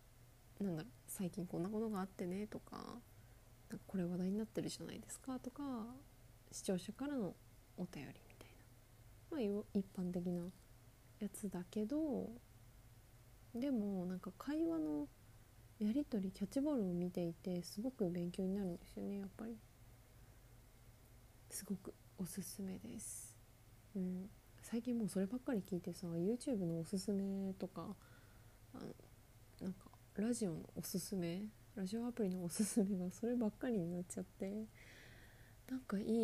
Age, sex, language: 20-39, female, Japanese